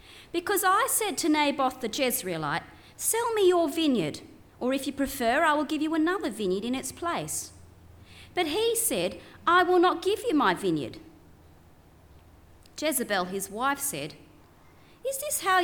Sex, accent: female, Australian